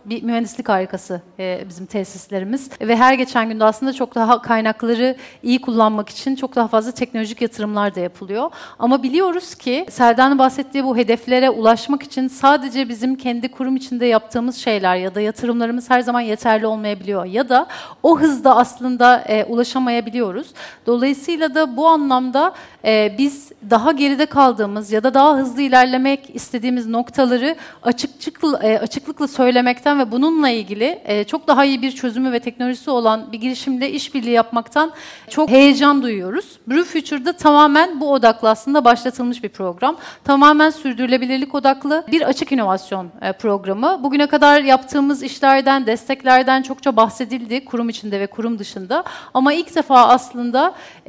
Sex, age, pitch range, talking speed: female, 40-59, 230-280 Hz, 140 wpm